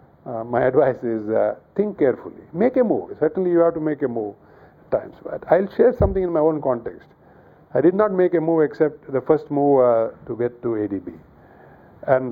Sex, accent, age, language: male, Indian, 50-69, English